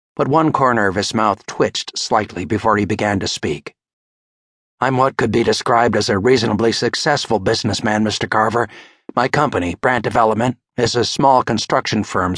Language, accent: English, American